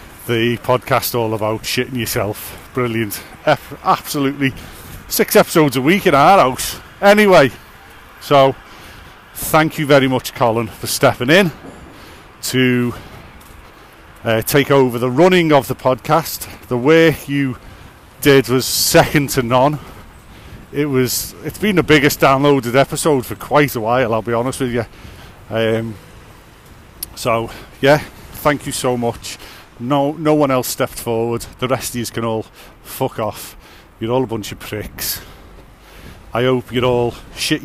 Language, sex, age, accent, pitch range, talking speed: English, male, 40-59, British, 105-135 Hz, 145 wpm